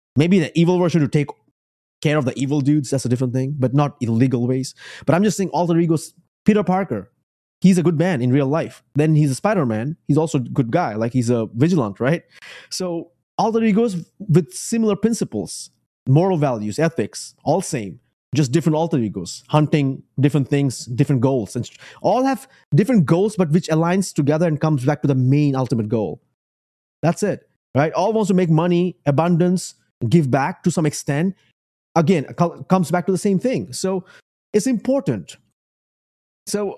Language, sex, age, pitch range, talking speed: English, male, 30-49, 135-185 Hz, 180 wpm